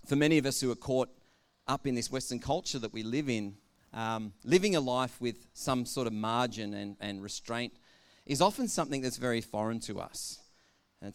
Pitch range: 130-185 Hz